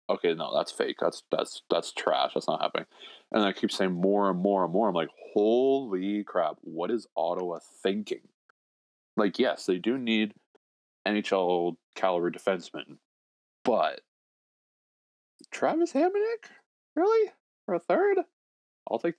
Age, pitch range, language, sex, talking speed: 20-39, 85-110 Hz, English, male, 140 wpm